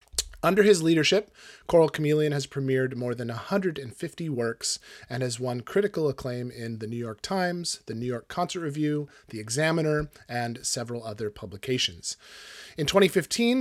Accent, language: American, English